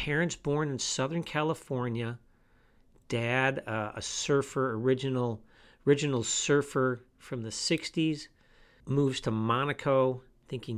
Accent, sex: American, male